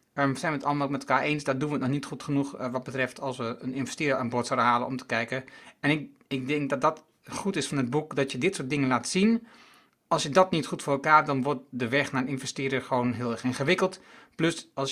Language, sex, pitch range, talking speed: Dutch, male, 135-165 Hz, 280 wpm